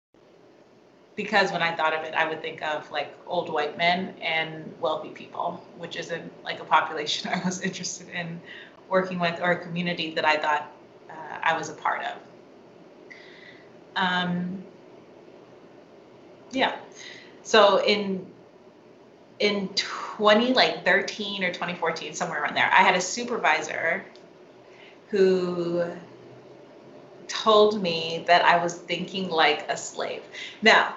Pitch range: 170-210 Hz